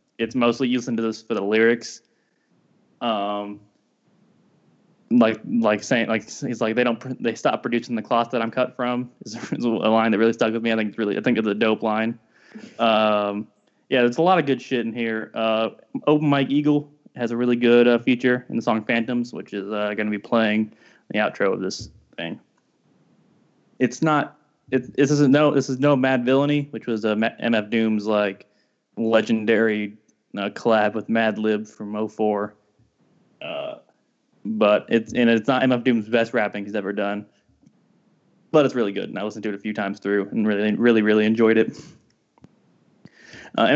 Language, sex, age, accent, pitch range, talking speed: English, male, 20-39, American, 110-130 Hz, 190 wpm